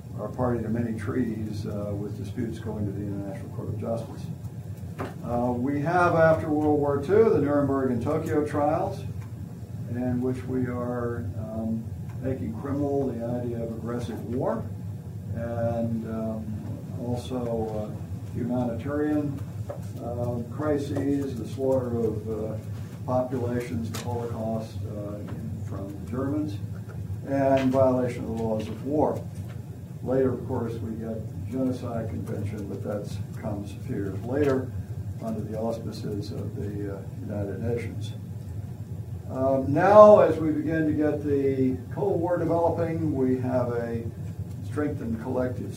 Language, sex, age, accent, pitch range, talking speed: English, male, 60-79, American, 110-130 Hz, 130 wpm